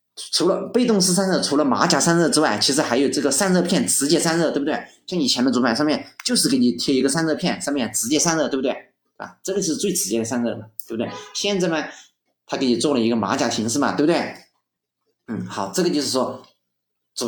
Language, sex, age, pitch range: Chinese, male, 30-49, 125-180 Hz